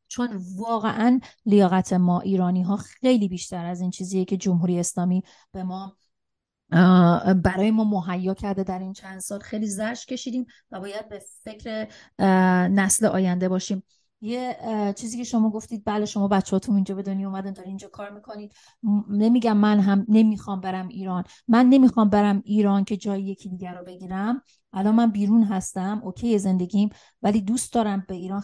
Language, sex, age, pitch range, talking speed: Persian, female, 30-49, 185-215 Hz, 160 wpm